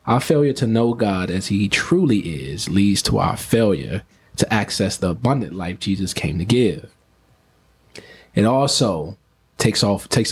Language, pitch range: English, 95-115 Hz